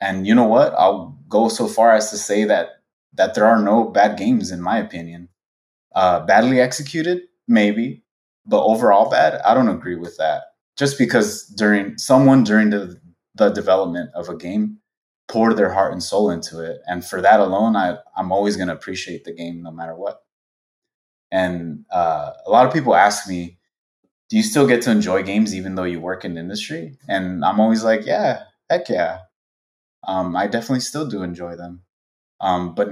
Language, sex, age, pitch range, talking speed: English, male, 20-39, 85-110 Hz, 190 wpm